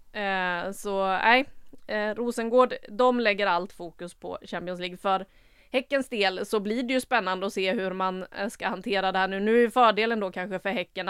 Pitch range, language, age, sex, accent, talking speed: 190-220 Hz, English, 30-49, female, Swedish, 195 wpm